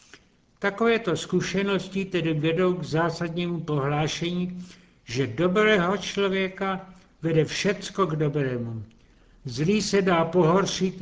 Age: 70-89